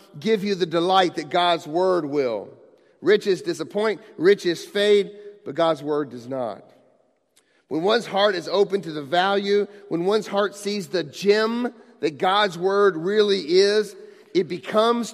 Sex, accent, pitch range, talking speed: male, American, 170-210 Hz, 150 wpm